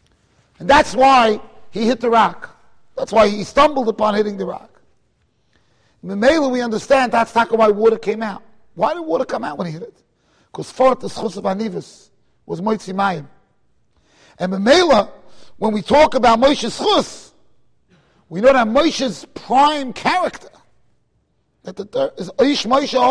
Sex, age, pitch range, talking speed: male, 40-59, 215-280 Hz, 155 wpm